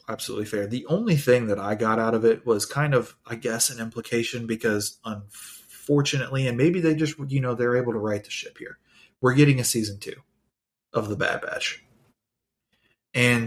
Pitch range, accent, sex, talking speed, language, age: 105-120 Hz, American, male, 190 wpm, English, 30-49